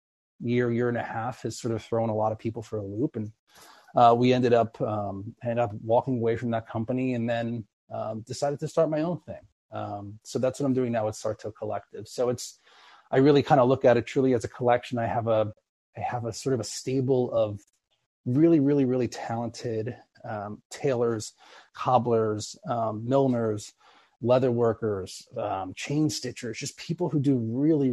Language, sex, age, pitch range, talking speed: English, male, 30-49, 115-130 Hz, 195 wpm